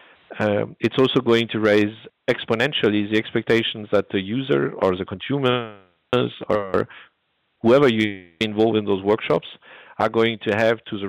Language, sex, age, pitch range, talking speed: English, male, 50-69, 100-120 Hz, 150 wpm